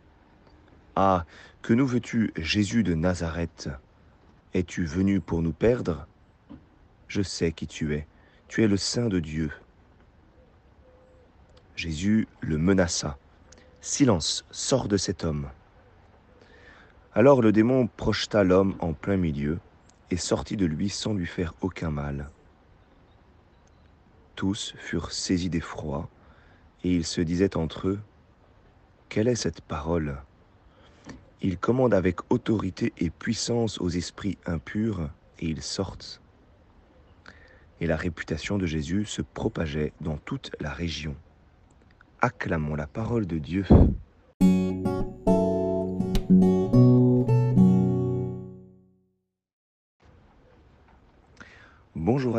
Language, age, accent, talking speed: French, 40-59, French, 105 wpm